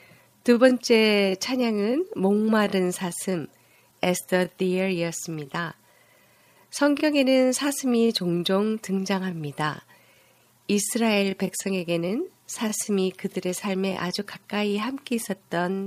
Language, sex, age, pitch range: Korean, female, 40-59, 170-220 Hz